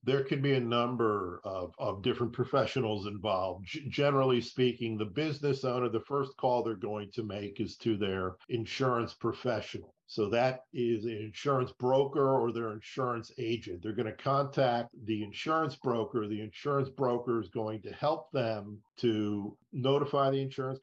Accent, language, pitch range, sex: American, English, 115-135 Hz, male